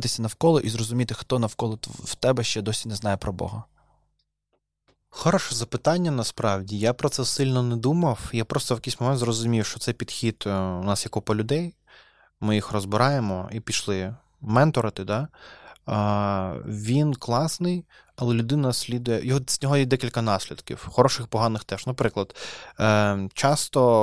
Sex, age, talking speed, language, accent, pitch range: male, 20-39, 145 wpm, Ukrainian, native, 110-135 Hz